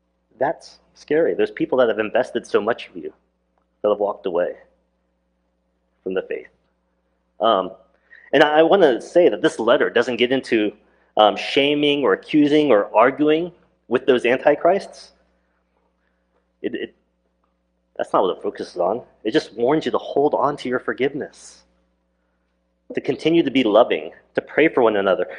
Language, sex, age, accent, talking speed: English, male, 30-49, American, 160 wpm